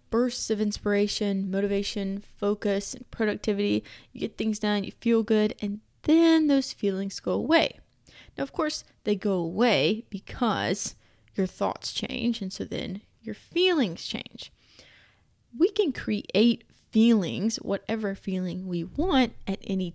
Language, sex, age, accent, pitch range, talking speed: English, female, 20-39, American, 195-235 Hz, 140 wpm